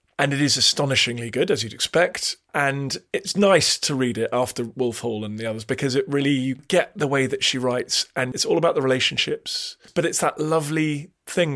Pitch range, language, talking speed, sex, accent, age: 120-145 Hz, English, 215 wpm, male, British, 30-49